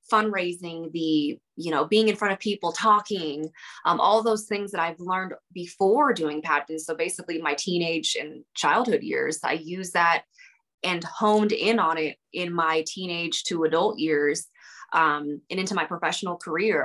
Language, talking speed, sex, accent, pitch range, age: English, 165 wpm, female, American, 165-220 Hz, 20-39